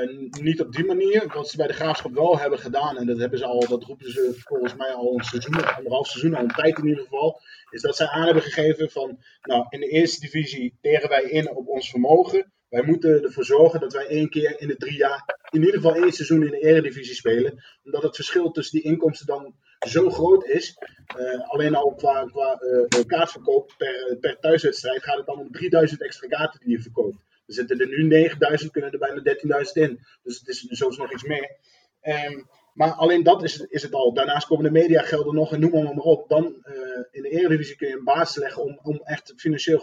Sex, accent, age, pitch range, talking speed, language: male, Dutch, 20-39, 140-185 Hz, 230 wpm, Dutch